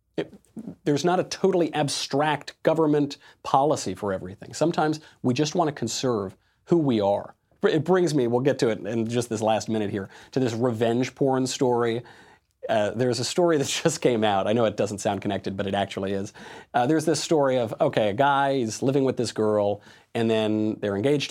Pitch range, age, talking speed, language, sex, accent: 105-135 Hz, 40-59, 200 wpm, English, male, American